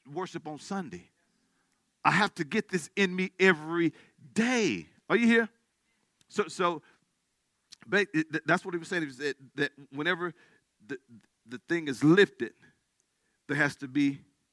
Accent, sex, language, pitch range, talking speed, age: American, male, English, 155-235 Hz, 155 wpm, 40-59